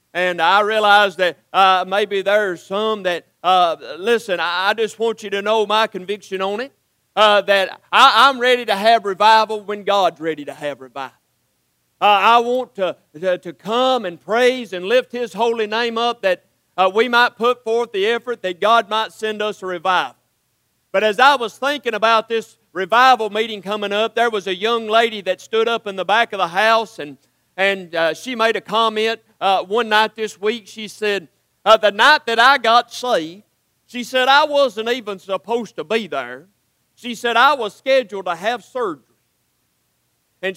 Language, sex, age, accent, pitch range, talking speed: English, male, 50-69, American, 190-235 Hz, 190 wpm